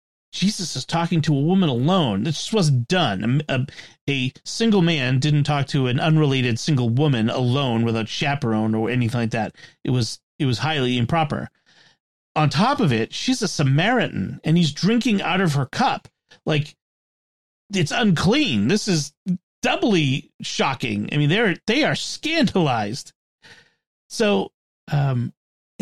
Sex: male